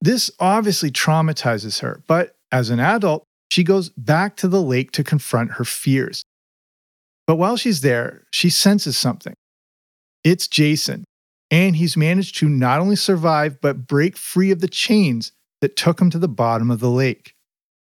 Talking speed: 165 wpm